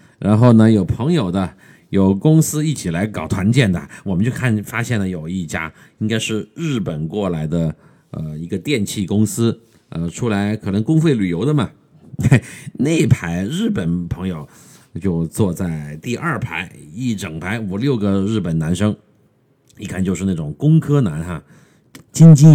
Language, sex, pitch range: Chinese, male, 95-145 Hz